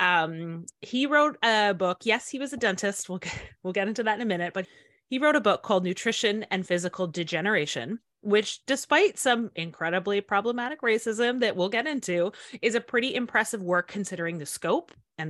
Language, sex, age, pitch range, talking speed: English, female, 30-49, 170-220 Hz, 190 wpm